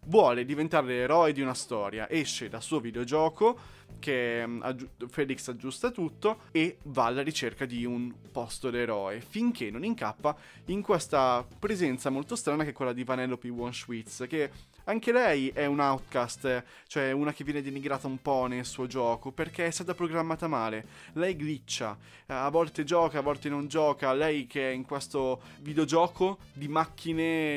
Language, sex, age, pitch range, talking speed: Italian, male, 20-39, 125-165 Hz, 165 wpm